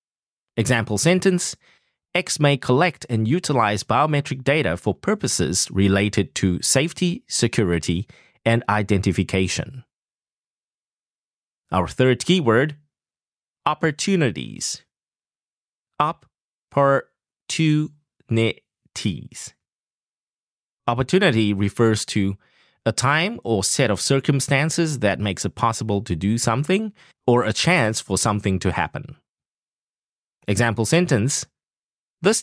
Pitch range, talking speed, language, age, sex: 105-150 Hz, 85 wpm, English, 30-49, male